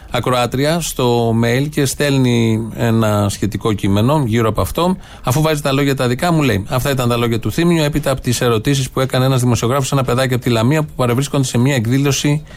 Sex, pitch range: male, 115-145 Hz